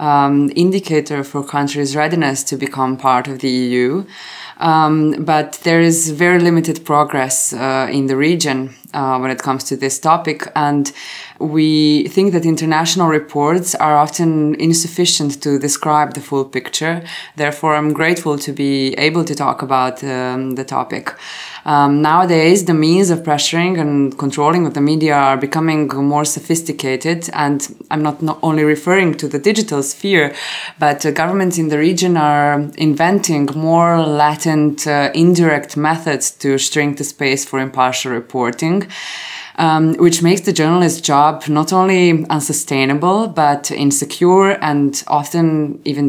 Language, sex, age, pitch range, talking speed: English, female, 20-39, 145-165 Hz, 145 wpm